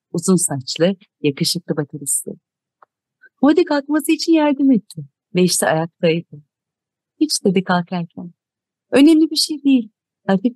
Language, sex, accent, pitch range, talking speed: Turkish, female, native, 155-210 Hz, 115 wpm